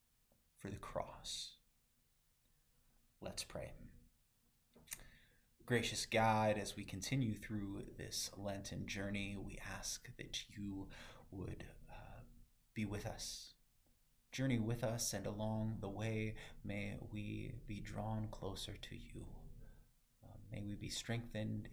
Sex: male